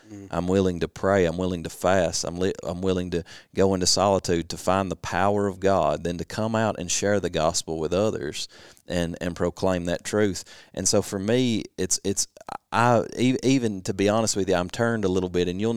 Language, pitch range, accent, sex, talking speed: English, 85-100 Hz, American, male, 220 wpm